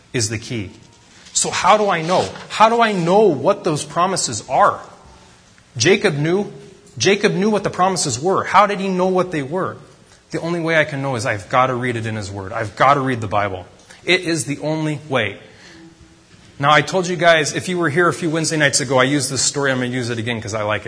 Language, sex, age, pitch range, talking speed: English, male, 30-49, 110-160 Hz, 240 wpm